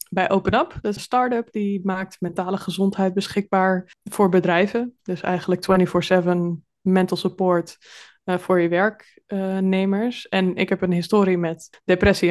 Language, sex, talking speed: Dutch, female, 125 wpm